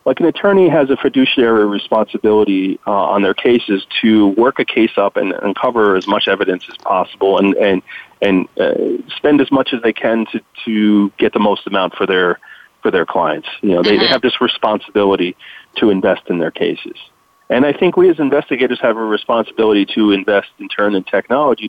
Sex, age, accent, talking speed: male, 40-59, American, 200 wpm